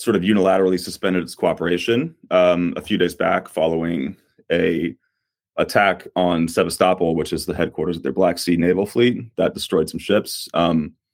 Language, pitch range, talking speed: English, 85-95 Hz, 165 wpm